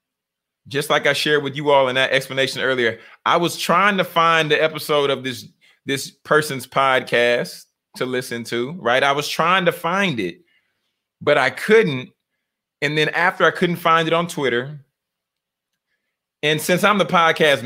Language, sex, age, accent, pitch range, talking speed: English, male, 30-49, American, 130-170 Hz, 170 wpm